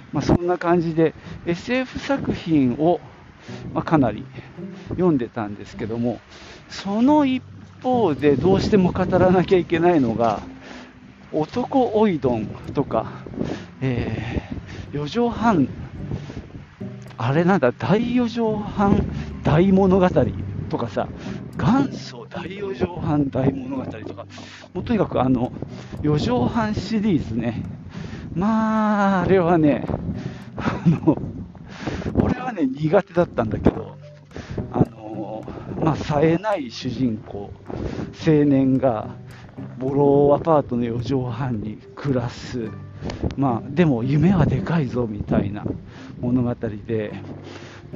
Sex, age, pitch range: male, 50-69, 120-180 Hz